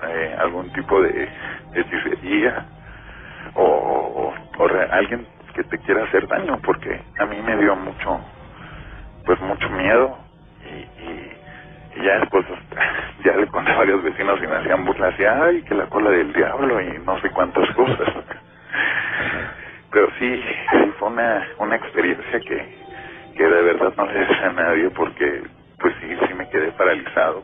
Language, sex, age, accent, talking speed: Spanish, male, 40-59, Mexican, 155 wpm